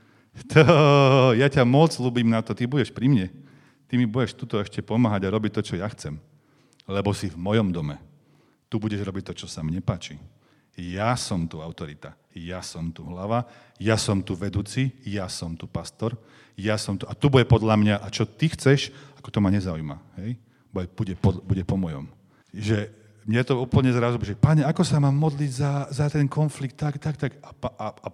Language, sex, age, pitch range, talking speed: Slovak, male, 40-59, 95-130 Hz, 205 wpm